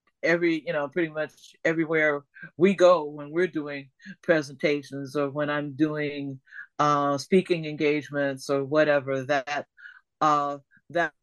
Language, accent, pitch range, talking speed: English, American, 150-180 Hz, 135 wpm